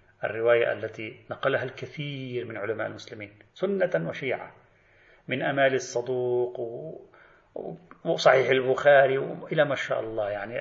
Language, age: Arabic, 40-59